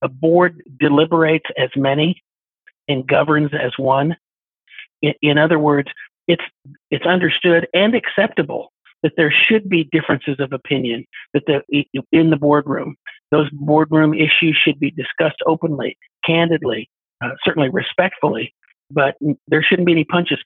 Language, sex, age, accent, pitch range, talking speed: English, male, 50-69, American, 145-165 Hz, 140 wpm